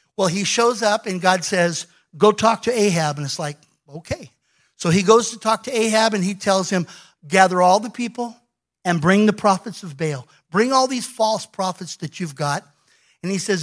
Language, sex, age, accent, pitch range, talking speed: English, male, 50-69, American, 180-250 Hz, 205 wpm